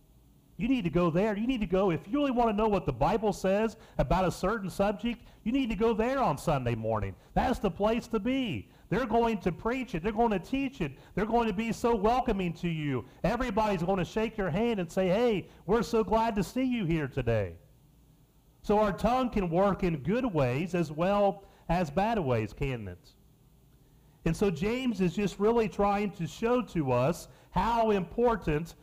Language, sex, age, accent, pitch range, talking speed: English, male, 40-59, American, 160-225 Hz, 205 wpm